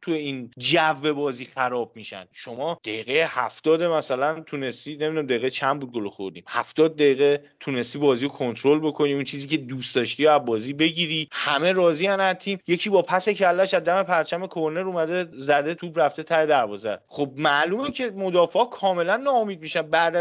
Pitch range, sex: 140-190 Hz, male